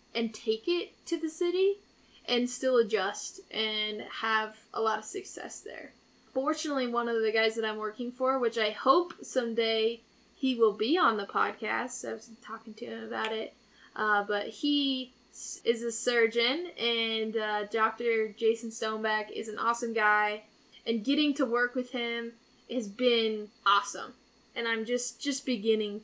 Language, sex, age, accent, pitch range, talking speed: English, female, 10-29, American, 220-255 Hz, 165 wpm